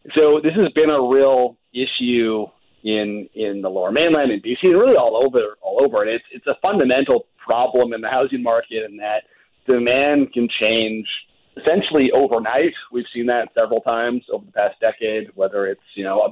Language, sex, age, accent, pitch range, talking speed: English, male, 40-59, American, 115-155 Hz, 190 wpm